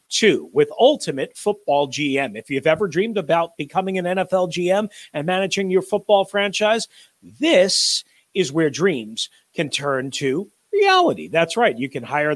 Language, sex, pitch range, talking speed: English, male, 165-245 Hz, 155 wpm